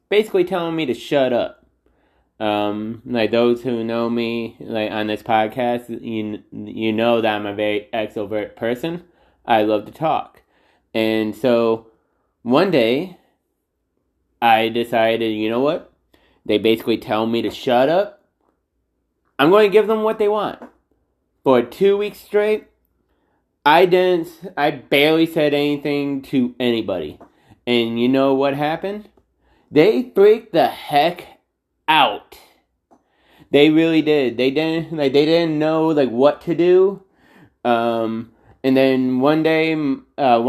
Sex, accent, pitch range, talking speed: male, American, 115-150 Hz, 140 wpm